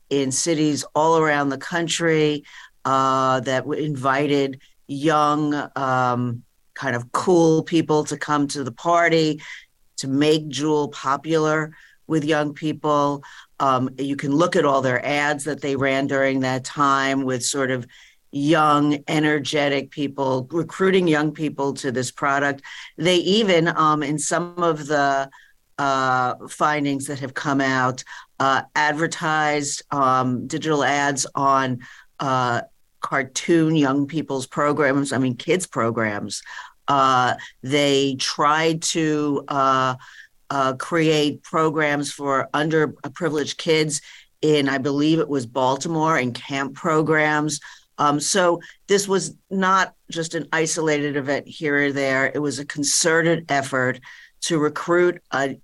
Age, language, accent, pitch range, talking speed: 50-69, English, American, 135-155 Hz, 130 wpm